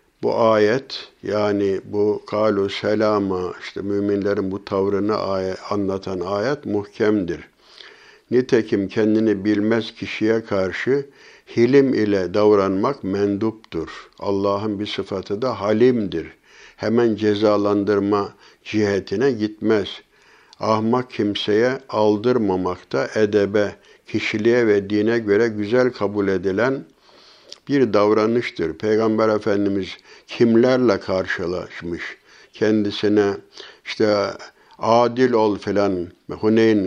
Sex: male